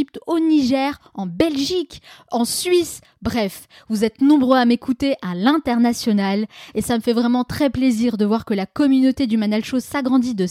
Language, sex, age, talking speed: French, female, 20-39, 170 wpm